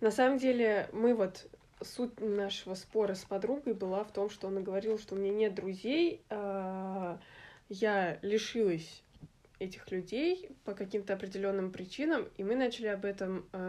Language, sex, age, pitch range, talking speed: Russian, female, 20-39, 190-225 Hz, 155 wpm